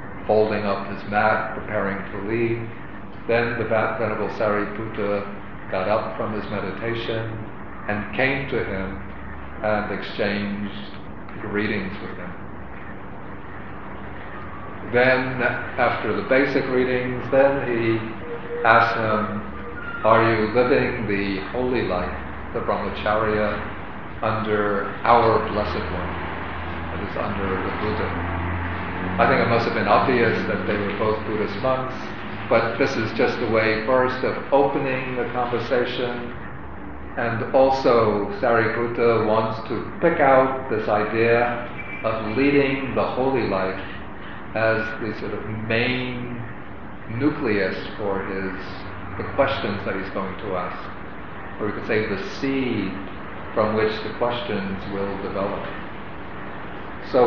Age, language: 50-69, English